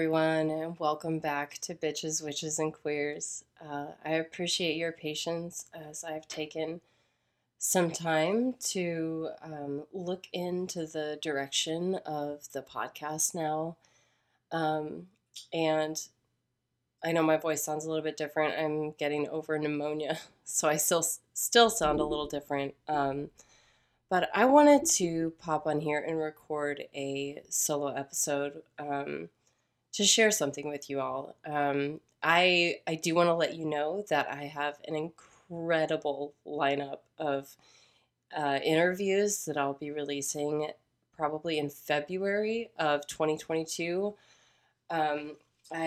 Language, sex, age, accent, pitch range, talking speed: English, female, 20-39, American, 145-165 Hz, 130 wpm